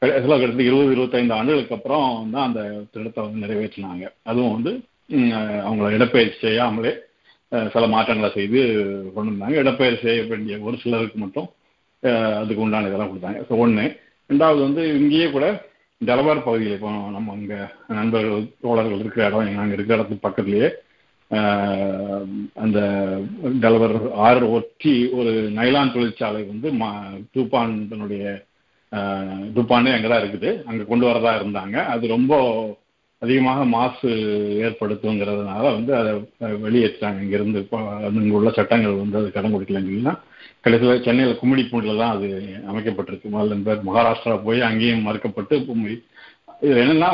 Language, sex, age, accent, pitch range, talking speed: Tamil, male, 50-69, native, 105-120 Hz, 120 wpm